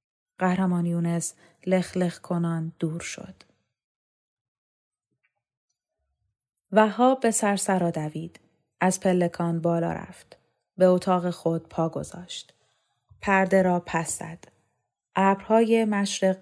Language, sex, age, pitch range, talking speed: Persian, female, 30-49, 165-195 Hz, 90 wpm